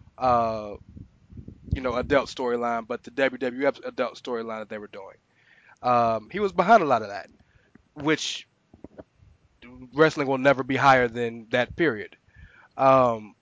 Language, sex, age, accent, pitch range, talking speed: English, male, 20-39, American, 120-160 Hz, 145 wpm